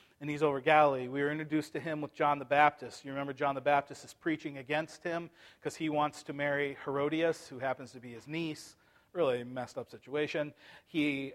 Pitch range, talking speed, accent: 135-155 Hz, 205 wpm, American